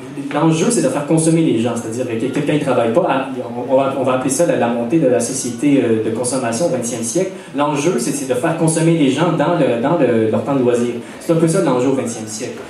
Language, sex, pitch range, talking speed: French, male, 125-165 Hz, 250 wpm